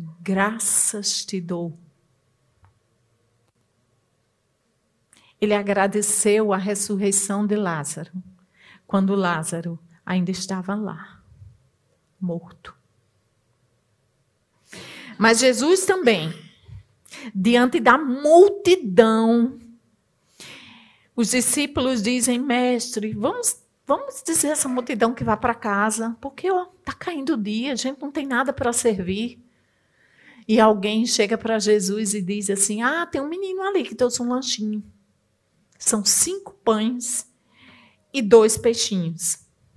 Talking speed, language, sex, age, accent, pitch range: 105 wpm, Portuguese, female, 40-59, Brazilian, 170-235 Hz